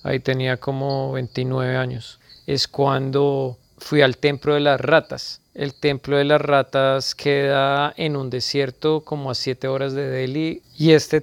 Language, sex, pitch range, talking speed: Spanish, male, 130-145 Hz, 160 wpm